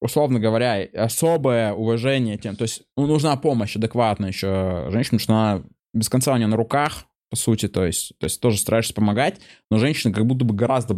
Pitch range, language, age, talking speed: 105-130 Hz, Russian, 20-39, 195 wpm